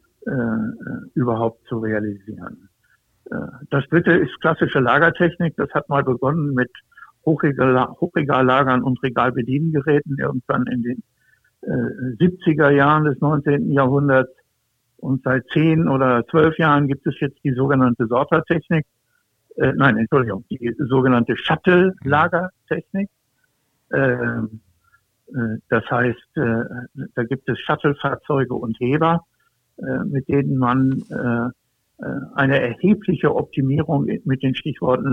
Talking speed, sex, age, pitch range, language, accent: 100 wpm, male, 60-79, 125-155 Hz, German, German